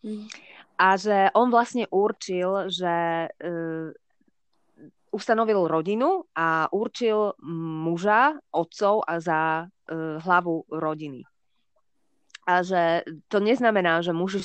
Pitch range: 160-195 Hz